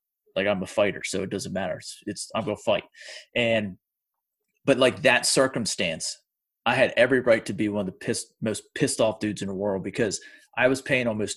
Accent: American